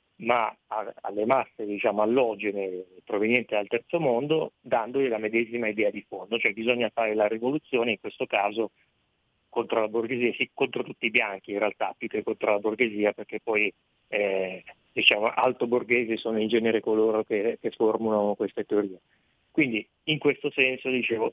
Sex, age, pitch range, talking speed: male, 30-49, 105-120 Hz, 165 wpm